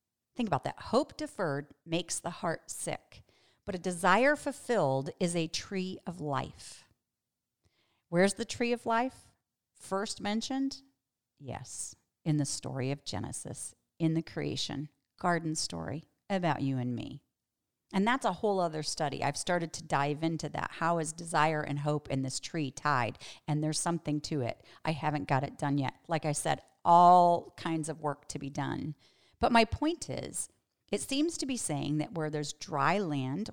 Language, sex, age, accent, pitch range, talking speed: English, female, 40-59, American, 150-180 Hz, 170 wpm